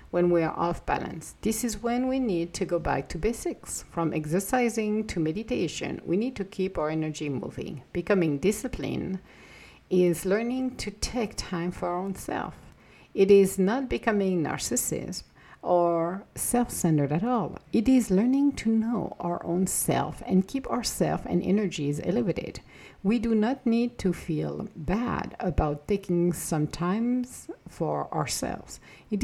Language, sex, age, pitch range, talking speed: English, female, 50-69, 165-220 Hz, 155 wpm